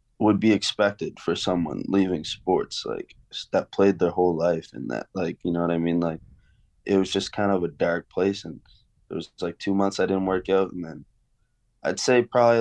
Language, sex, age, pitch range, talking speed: English, male, 20-39, 85-105 Hz, 215 wpm